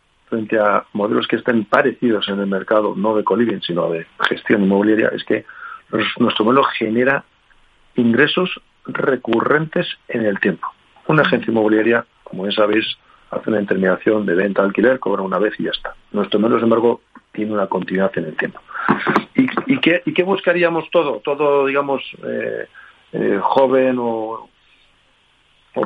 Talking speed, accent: 160 wpm, Spanish